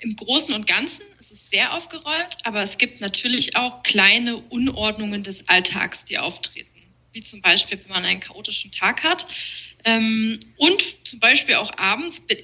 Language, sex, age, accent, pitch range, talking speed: German, female, 20-39, German, 210-275 Hz, 165 wpm